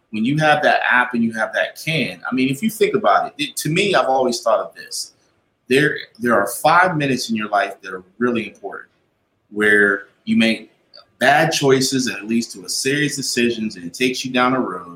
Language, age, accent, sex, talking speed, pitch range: English, 30-49, American, male, 225 wpm, 105-135 Hz